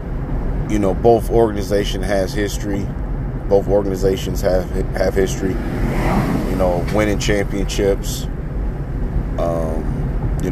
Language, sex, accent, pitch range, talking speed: English, male, American, 100-125 Hz, 95 wpm